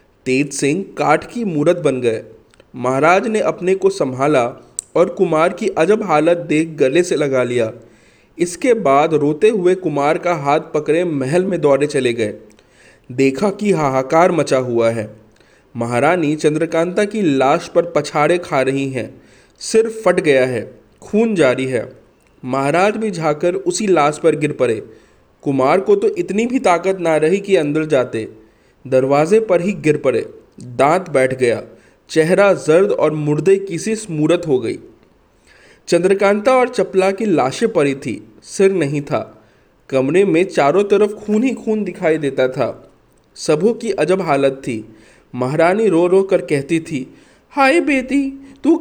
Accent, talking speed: native, 155 wpm